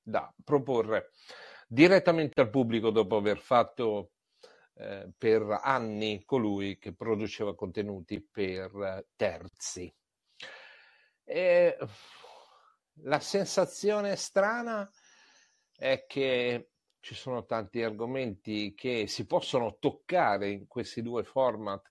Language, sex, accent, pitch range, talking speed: English, male, Italian, 110-155 Hz, 95 wpm